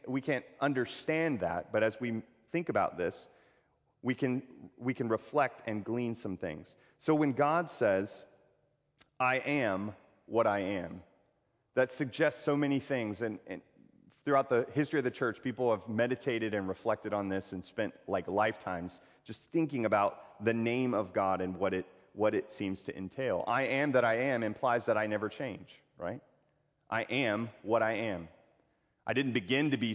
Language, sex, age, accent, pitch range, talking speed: English, male, 40-59, American, 105-140 Hz, 175 wpm